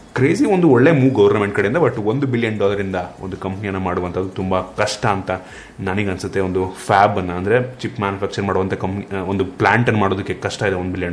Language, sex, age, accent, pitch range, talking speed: Kannada, male, 30-49, native, 95-125 Hz, 185 wpm